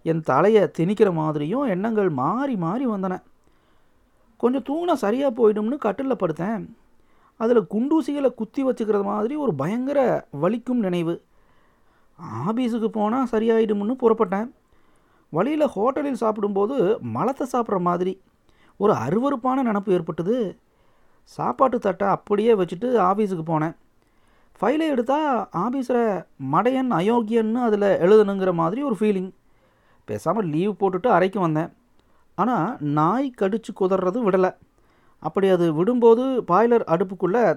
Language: Tamil